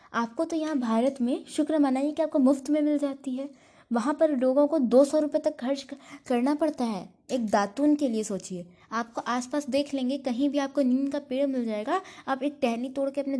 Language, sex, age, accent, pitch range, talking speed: Hindi, female, 20-39, native, 235-310 Hz, 225 wpm